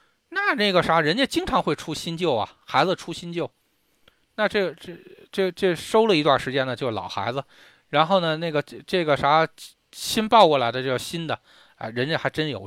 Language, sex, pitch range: Chinese, male, 115-165 Hz